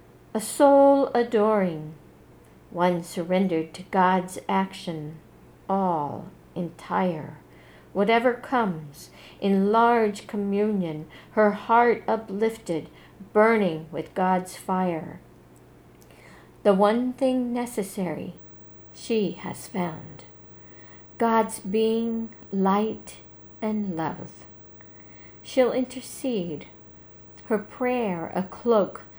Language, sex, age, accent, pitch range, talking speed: English, female, 60-79, American, 160-225 Hz, 80 wpm